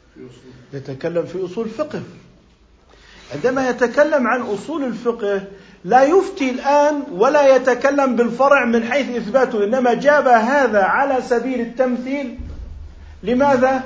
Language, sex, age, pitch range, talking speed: Arabic, male, 50-69, 205-270 Hz, 110 wpm